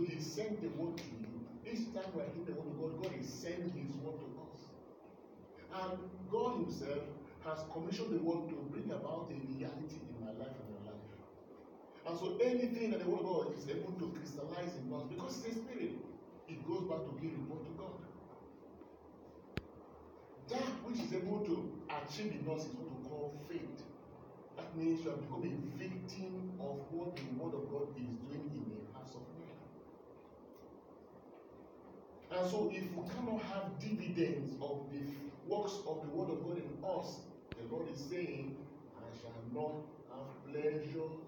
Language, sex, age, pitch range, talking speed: English, male, 40-59, 135-185 Hz, 185 wpm